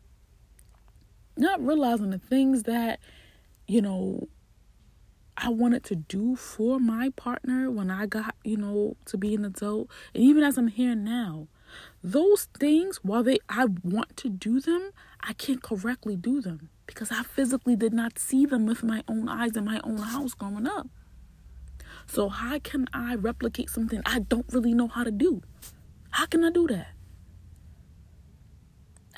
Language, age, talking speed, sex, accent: English, 20-39, 160 wpm, female, American